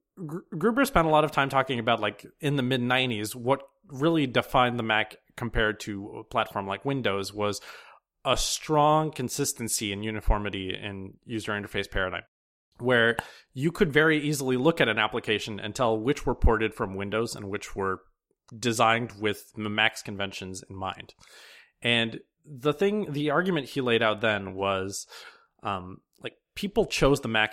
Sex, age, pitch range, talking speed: male, 30-49, 105-135 Hz, 160 wpm